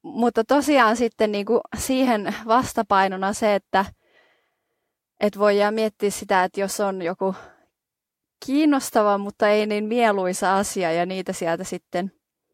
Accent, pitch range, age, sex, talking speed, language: native, 185-235 Hz, 20-39, female, 125 wpm, Finnish